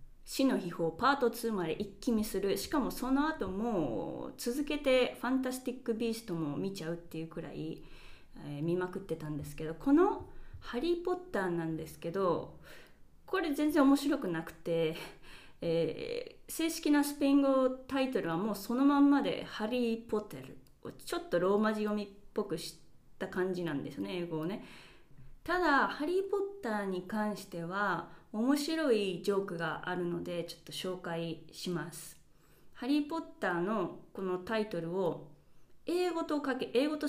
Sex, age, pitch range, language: female, 20-39, 170-280 Hz, Japanese